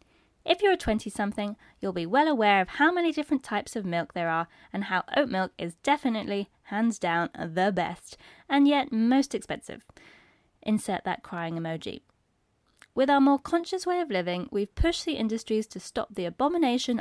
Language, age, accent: English, 20-39, British